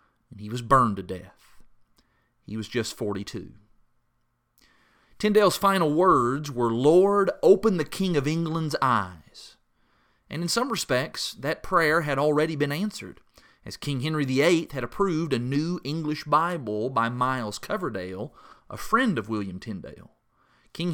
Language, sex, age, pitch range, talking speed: English, male, 30-49, 110-155 Hz, 145 wpm